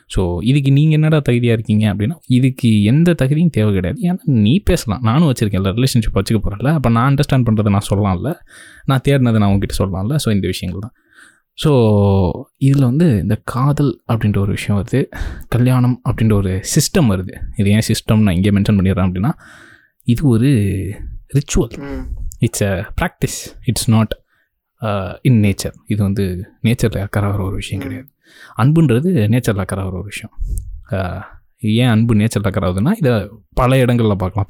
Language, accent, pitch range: Tamil, native, 100-130 Hz